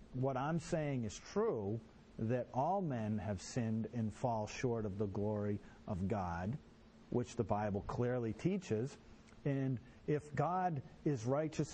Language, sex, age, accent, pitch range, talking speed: English, male, 50-69, American, 120-170 Hz, 145 wpm